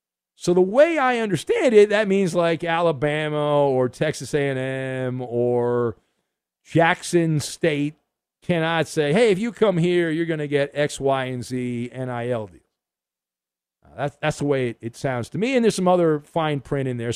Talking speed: 170 wpm